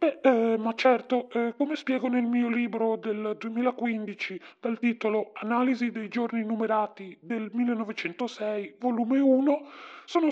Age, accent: 30-49, native